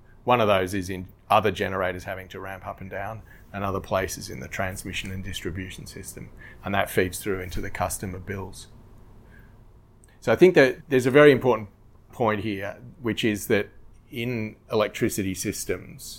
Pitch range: 95-110 Hz